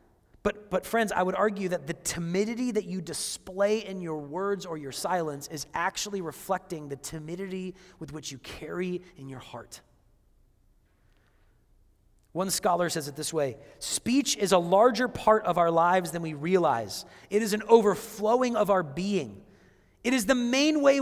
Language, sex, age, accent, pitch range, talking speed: English, male, 30-49, American, 155-230 Hz, 170 wpm